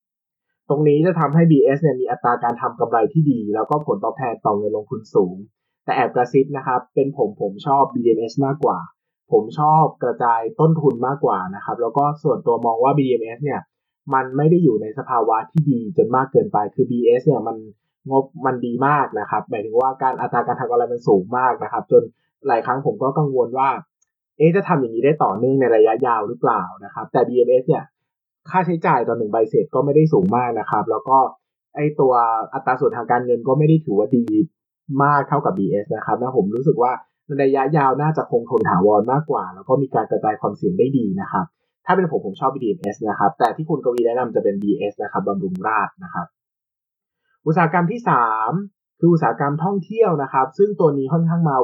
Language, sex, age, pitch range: Thai, male, 20-39, 125-160 Hz